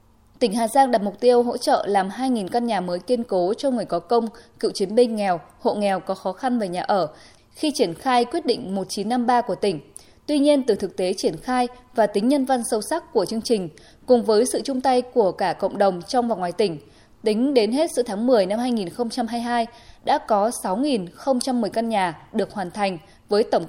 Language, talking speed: Vietnamese, 220 wpm